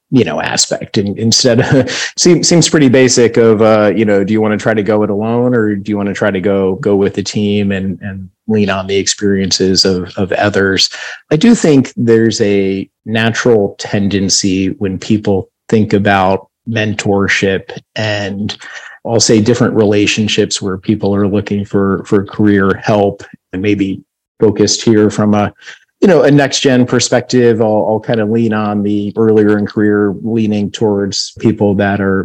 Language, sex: English, male